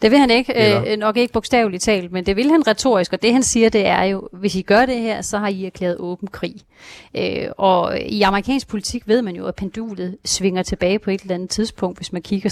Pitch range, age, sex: 190-235 Hz, 30-49, female